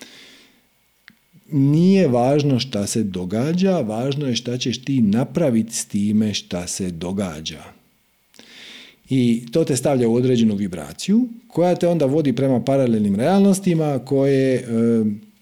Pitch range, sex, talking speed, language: 115-165 Hz, male, 120 wpm, Croatian